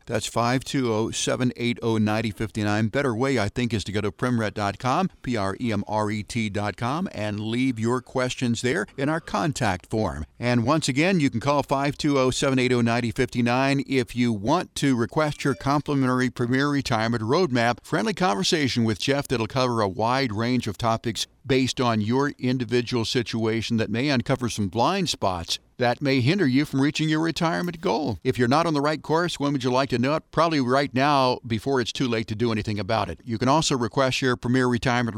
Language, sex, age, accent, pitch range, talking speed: English, male, 50-69, American, 110-135 Hz, 175 wpm